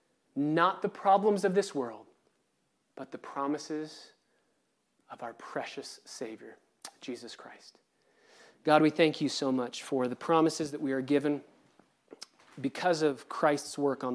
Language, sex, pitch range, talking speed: English, male, 140-175 Hz, 140 wpm